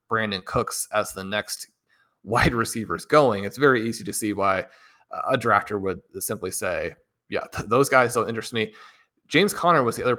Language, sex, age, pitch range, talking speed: English, male, 30-49, 110-125 Hz, 175 wpm